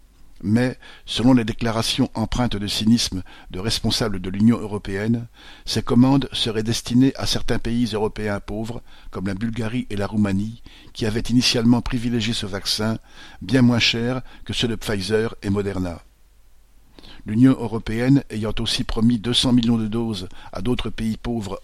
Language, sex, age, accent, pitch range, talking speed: French, male, 50-69, French, 100-120 Hz, 155 wpm